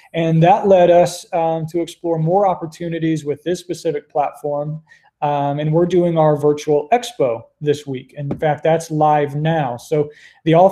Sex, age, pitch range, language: male, 20-39, 145-170 Hz, English